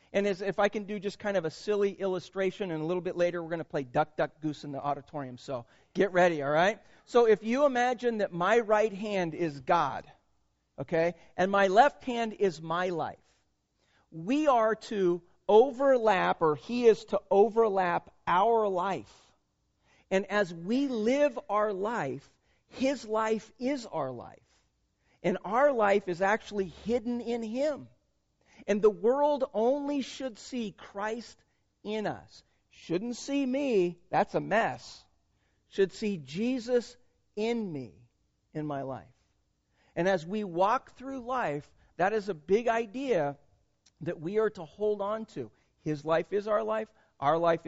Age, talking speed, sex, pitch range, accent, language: 40-59, 160 wpm, male, 160-225 Hz, American, English